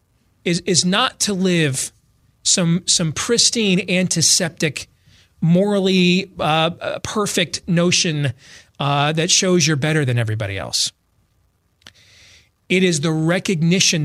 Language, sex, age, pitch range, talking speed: English, male, 40-59, 105-175 Hz, 105 wpm